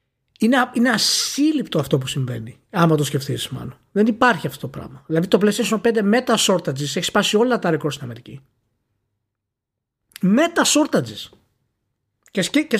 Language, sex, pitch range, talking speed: Greek, male, 150-225 Hz, 150 wpm